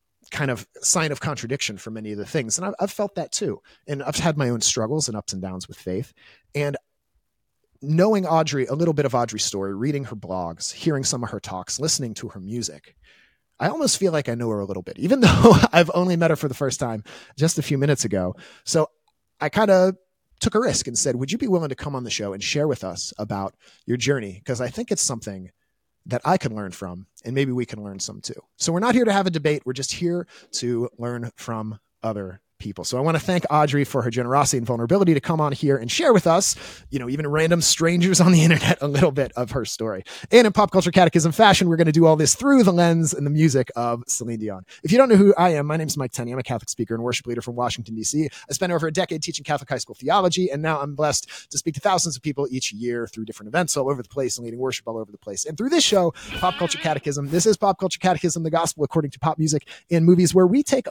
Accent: American